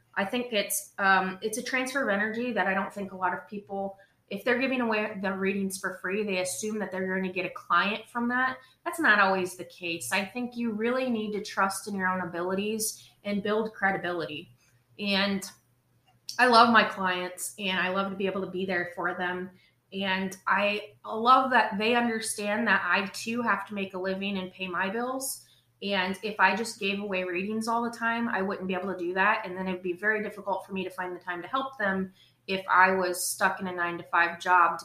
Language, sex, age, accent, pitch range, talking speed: English, female, 20-39, American, 180-215 Hz, 225 wpm